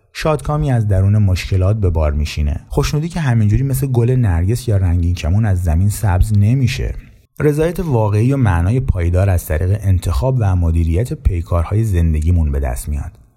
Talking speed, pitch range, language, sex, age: 155 wpm, 90-125 Hz, Persian, male, 30-49